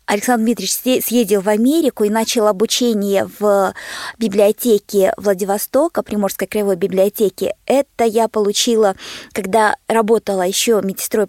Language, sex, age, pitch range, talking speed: Russian, female, 20-39, 215-275 Hz, 110 wpm